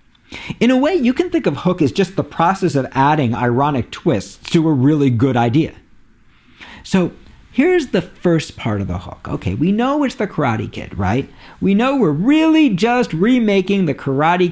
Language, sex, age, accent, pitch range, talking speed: English, male, 50-69, American, 110-180 Hz, 185 wpm